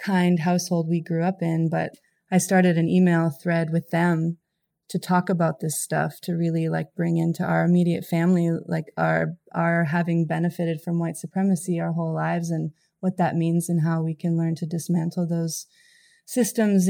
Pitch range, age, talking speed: 165-180 Hz, 20-39, 180 wpm